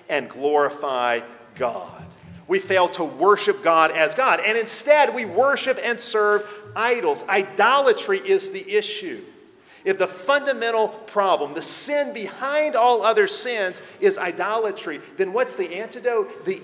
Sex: male